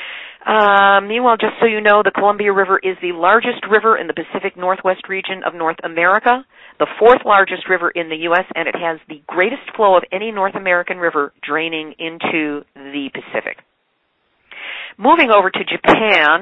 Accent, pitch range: American, 170-210 Hz